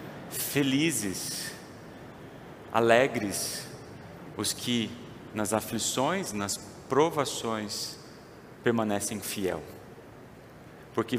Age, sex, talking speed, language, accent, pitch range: 40-59, male, 60 wpm, Portuguese, Brazilian, 110-140 Hz